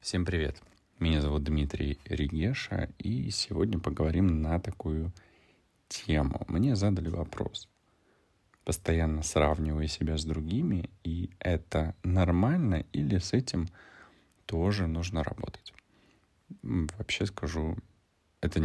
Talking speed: 105 wpm